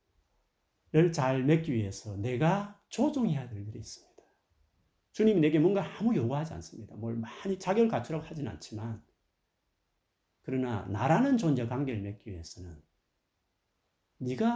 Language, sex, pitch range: Korean, male, 105-180 Hz